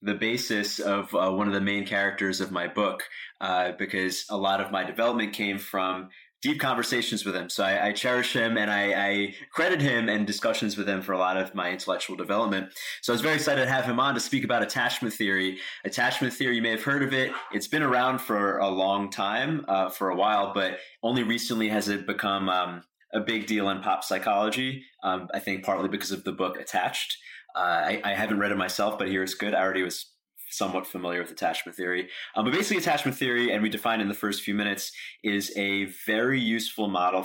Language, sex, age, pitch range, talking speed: English, male, 20-39, 95-115 Hz, 220 wpm